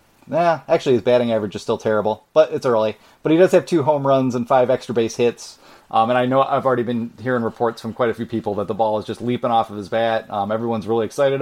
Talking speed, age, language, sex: 270 wpm, 30-49, English, male